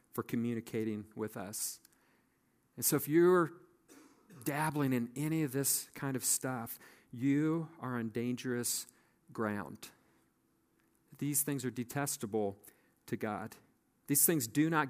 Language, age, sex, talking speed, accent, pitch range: English, 40-59, male, 125 wpm, American, 115-140 Hz